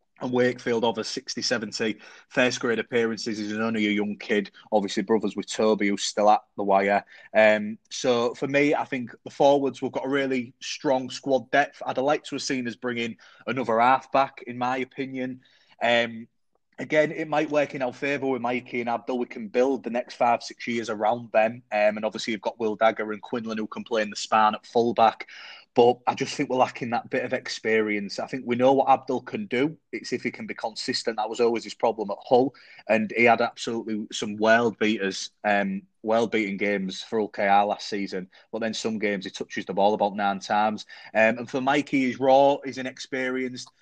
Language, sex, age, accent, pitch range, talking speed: English, male, 20-39, British, 110-130 Hz, 205 wpm